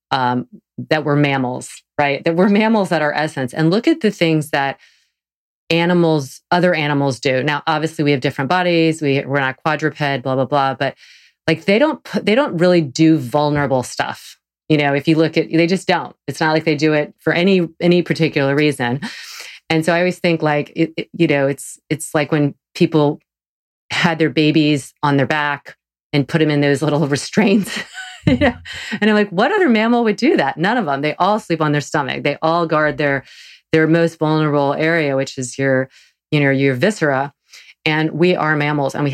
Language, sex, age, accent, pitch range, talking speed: English, female, 30-49, American, 145-185 Hz, 205 wpm